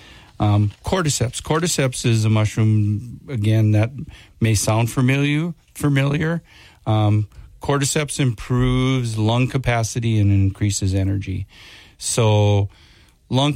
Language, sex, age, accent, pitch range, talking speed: English, male, 50-69, American, 100-115 Hz, 95 wpm